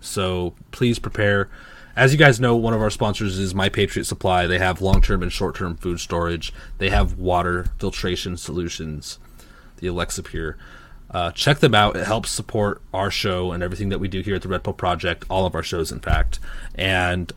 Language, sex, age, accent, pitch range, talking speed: English, male, 20-39, American, 95-115 Hz, 195 wpm